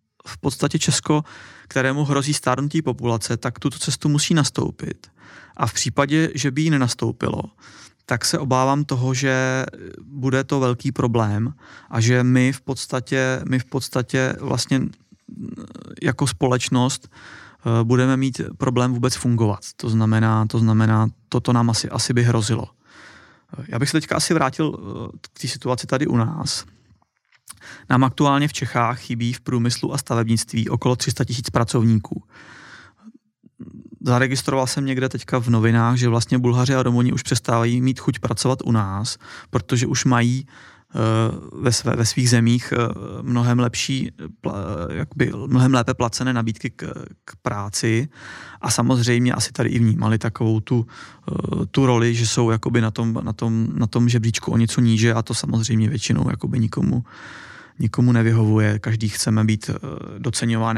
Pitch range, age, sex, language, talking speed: 115-135 Hz, 30-49, male, Czech, 150 wpm